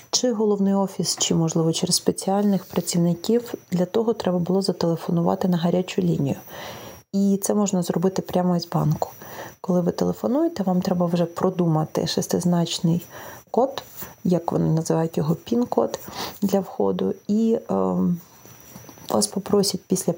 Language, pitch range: Ukrainian, 170-205 Hz